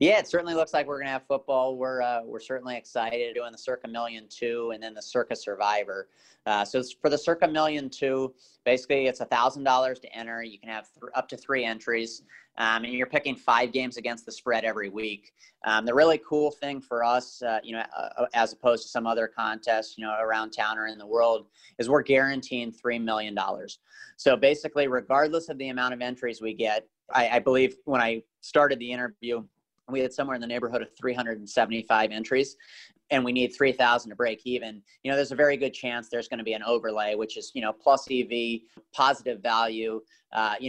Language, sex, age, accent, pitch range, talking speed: English, male, 30-49, American, 115-130 Hz, 210 wpm